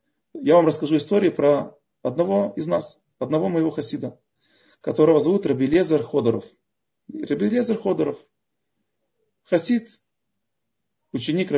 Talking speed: 100 wpm